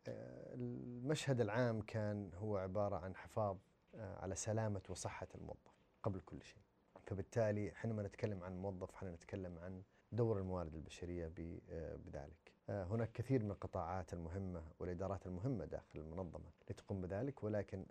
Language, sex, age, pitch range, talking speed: Arabic, male, 30-49, 95-120 Hz, 125 wpm